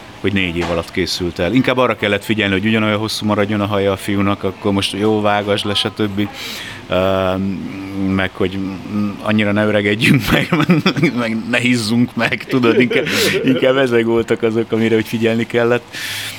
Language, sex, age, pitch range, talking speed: Hungarian, male, 30-49, 95-110 Hz, 165 wpm